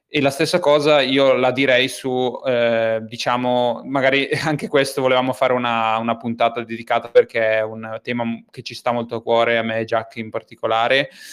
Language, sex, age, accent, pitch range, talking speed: Italian, male, 20-39, native, 115-135 Hz, 185 wpm